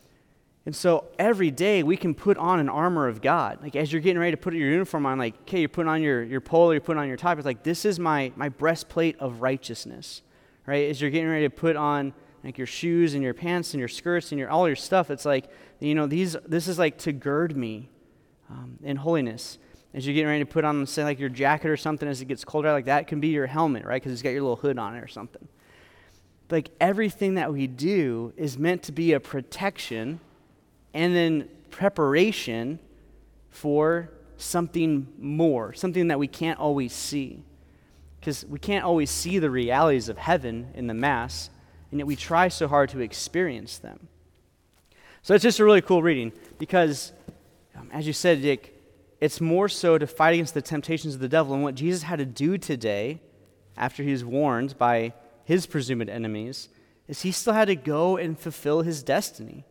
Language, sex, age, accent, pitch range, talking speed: English, male, 30-49, American, 130-170 Hz, 210 wpm